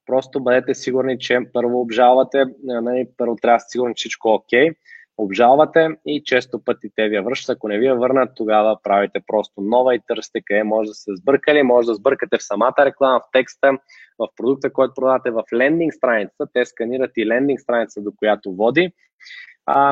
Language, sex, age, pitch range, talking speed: Bulgarian, male, 20-39, 110-130 Hz, 190 wpm